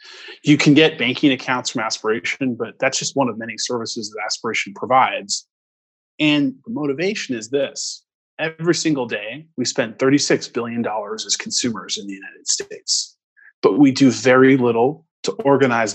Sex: male